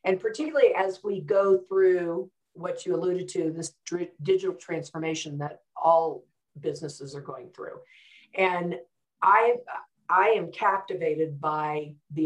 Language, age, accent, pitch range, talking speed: English, 50-69, American, 155-195 Hz, 120 wpm